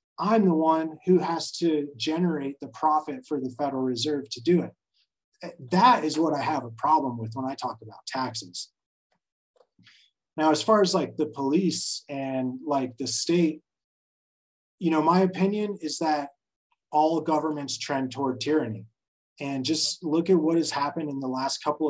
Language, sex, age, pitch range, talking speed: English, male, 30-49, 130-165 Hz, 170 wpm